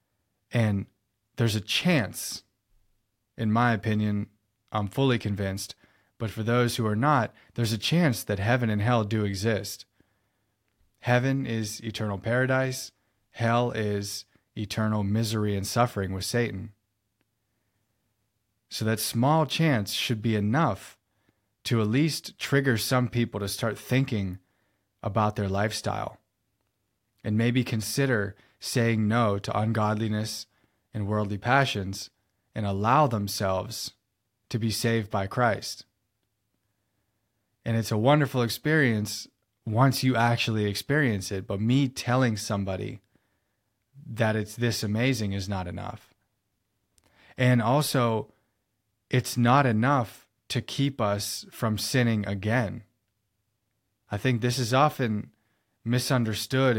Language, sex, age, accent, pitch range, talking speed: English, male, 30-49, American, 105-120 Hz, 120 wpm